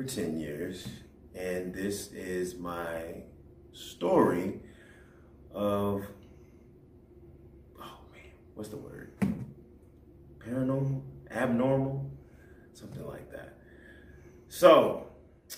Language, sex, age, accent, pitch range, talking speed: English, male, 30-49, American, 75-110 Hz, 75 wpm